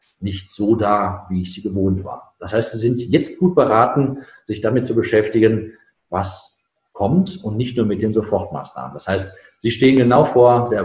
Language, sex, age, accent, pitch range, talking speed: German, male, 50-69, German, 105-140 Hz, 190 wpm